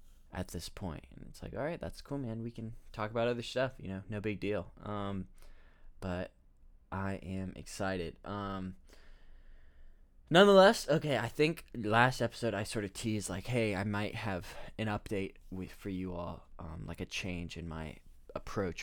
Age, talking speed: 20-39, 180 wpm